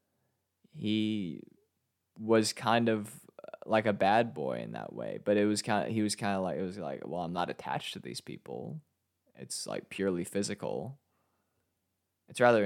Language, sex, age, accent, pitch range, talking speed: English, male, 20-39, American, 90-110 Hz, 175 wpm